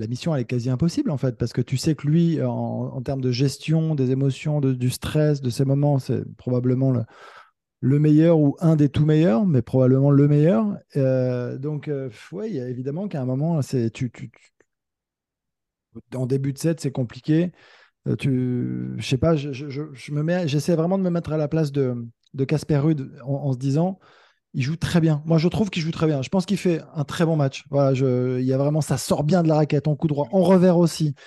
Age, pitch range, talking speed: 20-39, 130-165 Hz, 235 wpm